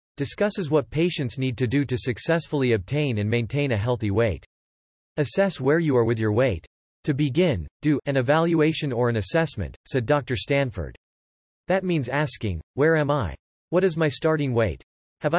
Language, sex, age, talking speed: English, male, 40-59, 170 wpm